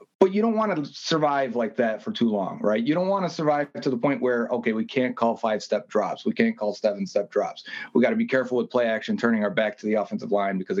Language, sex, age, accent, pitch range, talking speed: English, male, 30-49, American, 120-160 Hz, 265 wpm